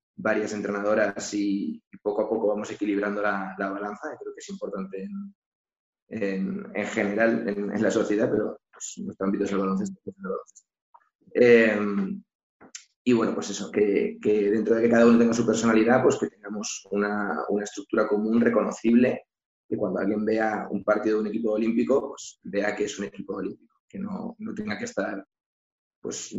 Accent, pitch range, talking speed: Spanish, 100-120 Hz, 180 wpm